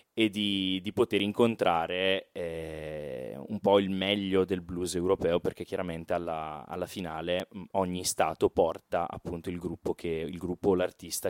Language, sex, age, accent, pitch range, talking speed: Italian, male, 20-39, native, 85-100 Hz, 145 wpm